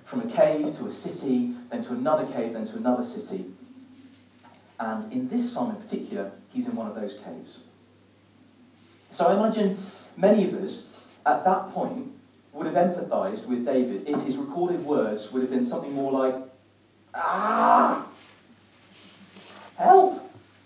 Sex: male